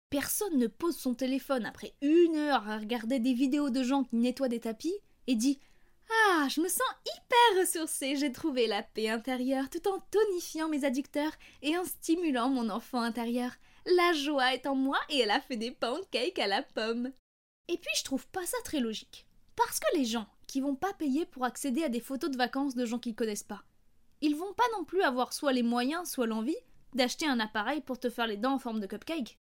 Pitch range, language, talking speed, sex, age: 245-330 Hz, French, 220 wpm, female, 20-39